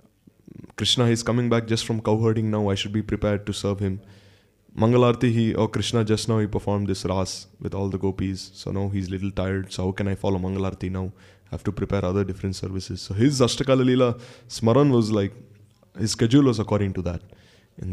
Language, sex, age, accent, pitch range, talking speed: English, male, 20-39, Indian, 95-120 Hz, 220 wpm